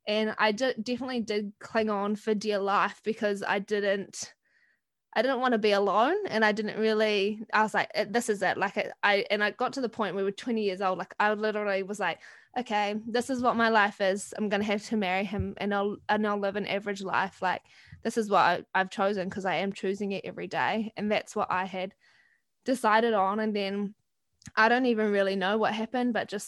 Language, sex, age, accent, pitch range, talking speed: English, female, 20-39, Australian, 205-240 Hz, 235 wpm